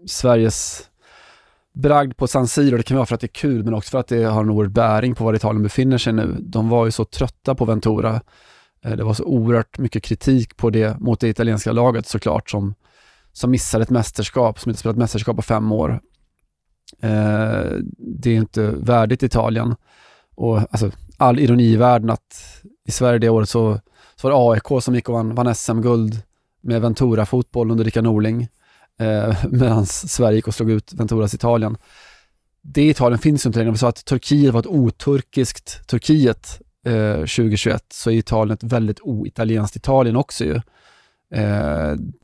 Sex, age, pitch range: male, 20-39, 110-120 Hz